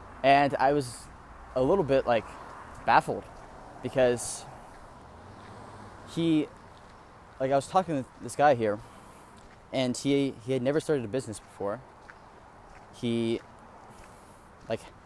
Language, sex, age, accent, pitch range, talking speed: English, male, 10-29, American, 100-125 Hz, 115 wpm